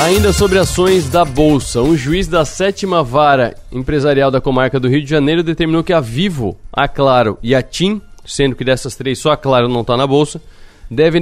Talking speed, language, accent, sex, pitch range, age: 205 wpm, Portuguese, Brazilian, male, 125-160 Hz, 20-39